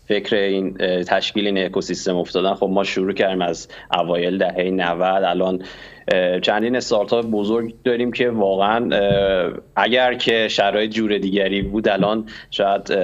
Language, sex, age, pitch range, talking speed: Persian, male, 30-49, 95-120 Hz, 140 wpm